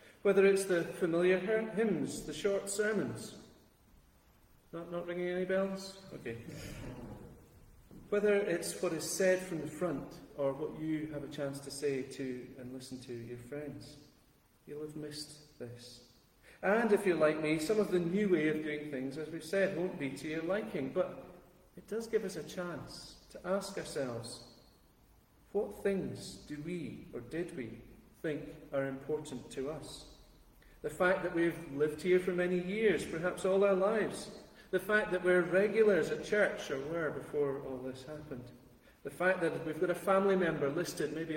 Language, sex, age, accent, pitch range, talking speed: English, male, 40-59, British, 140-185 Hz, 175 wpm